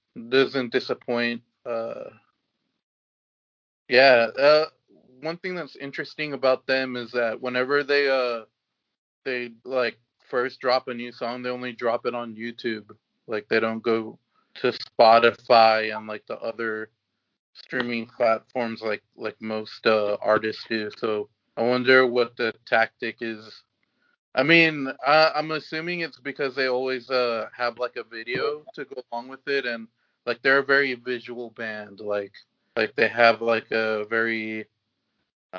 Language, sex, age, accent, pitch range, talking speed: English, male, 20-39, American, 110-130 Hz, 145 wpm